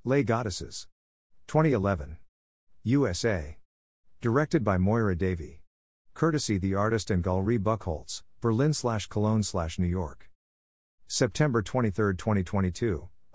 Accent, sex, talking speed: American, male, 85 wpm